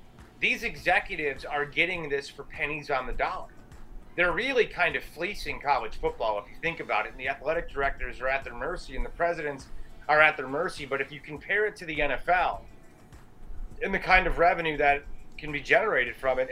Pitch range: 135-165 Hz